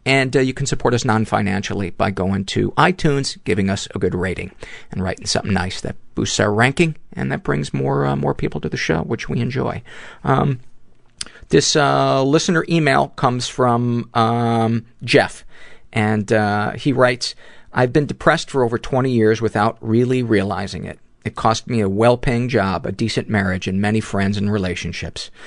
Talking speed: 180 wpm